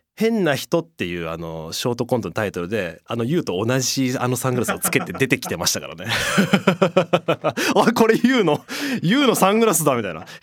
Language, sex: Japanese, male